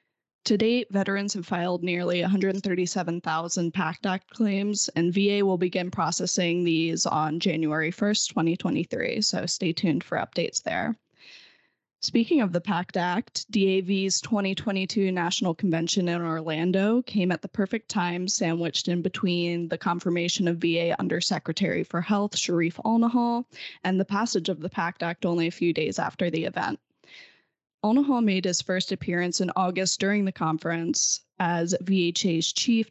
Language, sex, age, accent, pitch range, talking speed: English, female, 10-29, American, 175-205 Hz, 150 wpm